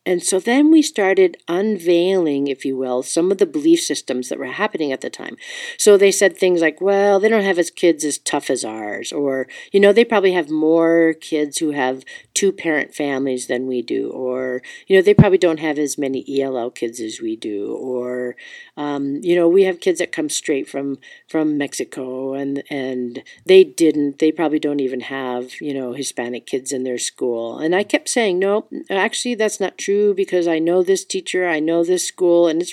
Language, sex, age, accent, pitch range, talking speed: English, female, 50-69, American, 140-200 Hz, 205 wpm